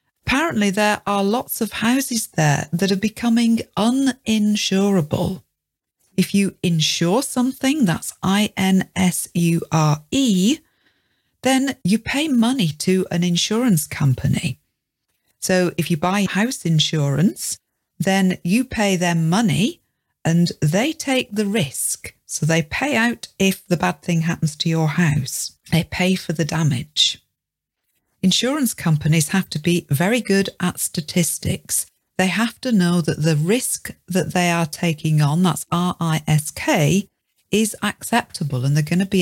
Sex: female